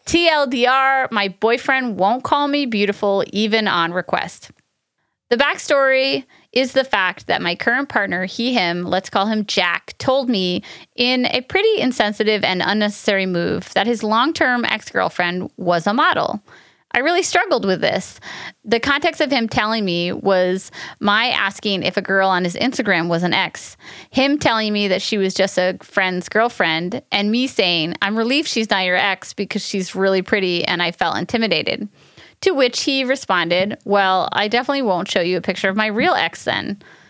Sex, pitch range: female, 185-245 Hz